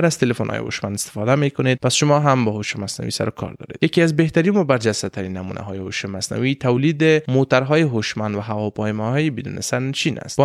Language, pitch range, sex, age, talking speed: Persian, 105-140 Hz, male, 20-39, 180 wpm